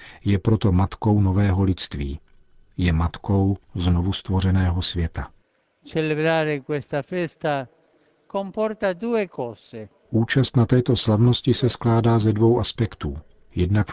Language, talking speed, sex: Czech, 85 wpm, male